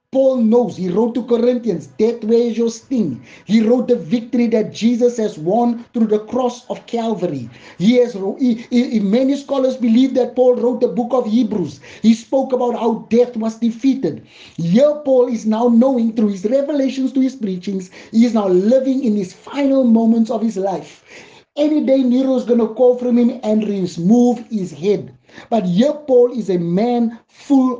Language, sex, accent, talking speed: English, male, South African, 185 wpm